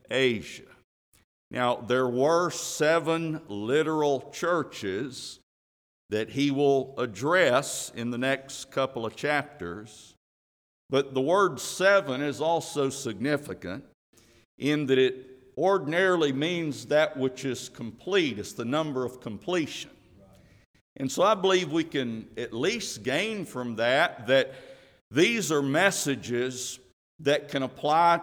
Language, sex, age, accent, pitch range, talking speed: English, male, 50-69, American, 120-160 Hz, 120 wpm